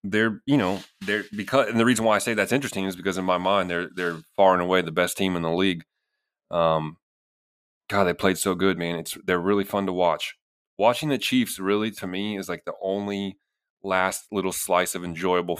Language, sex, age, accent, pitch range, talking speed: English, male, 20-39, American, 90-105 Hz, 220 wpm